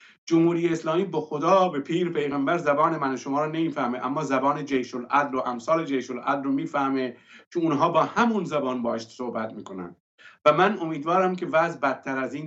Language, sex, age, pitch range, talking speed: English, male, 50-69, 135-170 Hz, 185 wpm